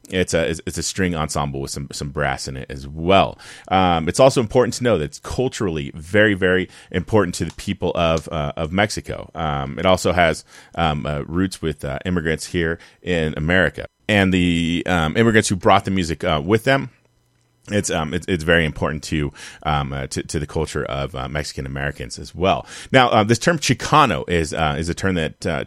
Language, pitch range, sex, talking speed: English, 75-100 Hz, male, 205 wpm